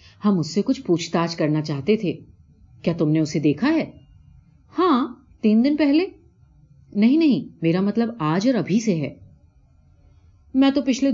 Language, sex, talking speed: Urdu, female, 150 wpm